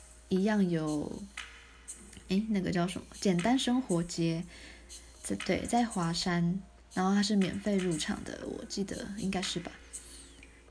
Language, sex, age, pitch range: Chinese, female, 20-39, 165-205 Hz